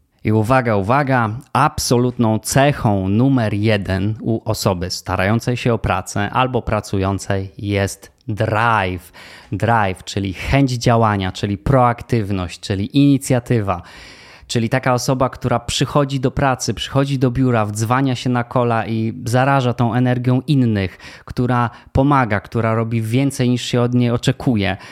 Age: 20-39